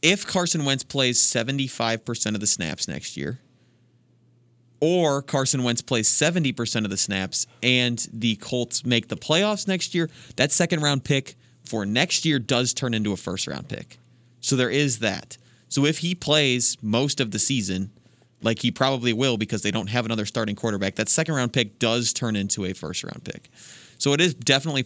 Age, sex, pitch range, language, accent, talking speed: 30-49, male, 110-135 Hz, English, American, 180 wpm